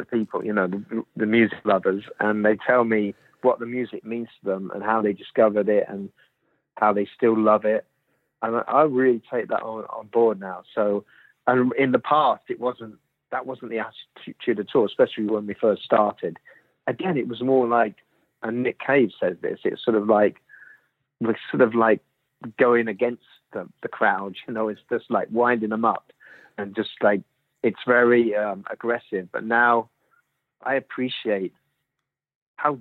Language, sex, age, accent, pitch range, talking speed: English, male, 40-59, British, 105-120 Hz, 180 wpm